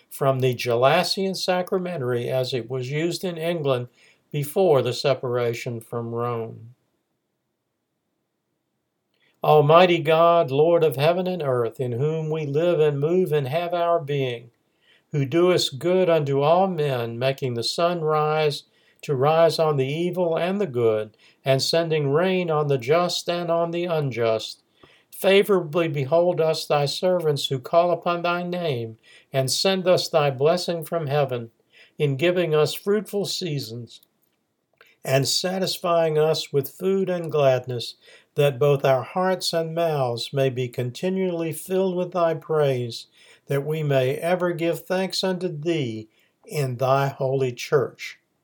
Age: 50-69